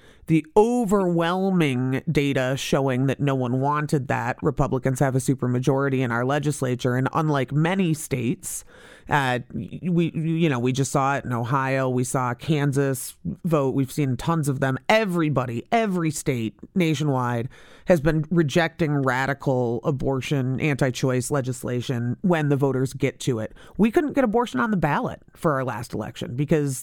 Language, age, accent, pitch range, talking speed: English, 30-49, American, 140-175 Hz, 150 wpm